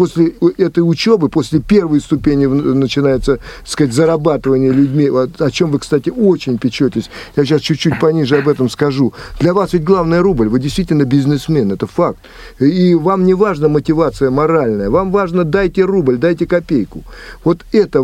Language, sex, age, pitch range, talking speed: Russian, male, 50-69, 135-170 Hz, 160 wpm